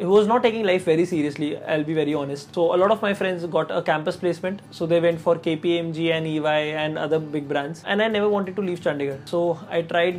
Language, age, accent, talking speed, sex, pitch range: Hindi, 20-39, native, 245 wpm, male, 170-210 Hz